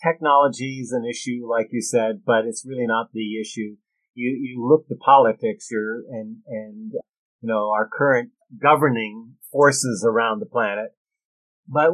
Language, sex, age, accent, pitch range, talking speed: English, male, 50-69, American, 120-170 Hz, 155 wpm